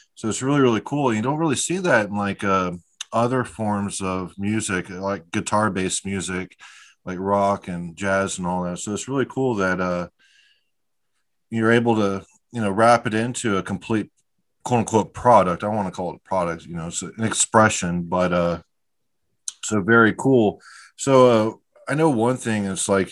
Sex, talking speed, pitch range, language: male, 185 wpm, 95-115 Hz, English